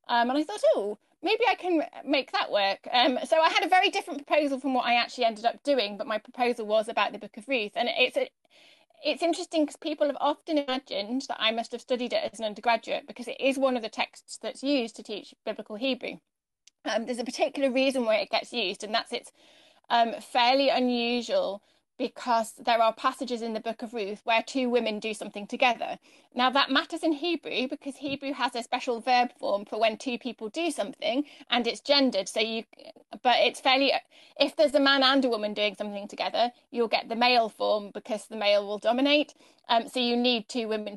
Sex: female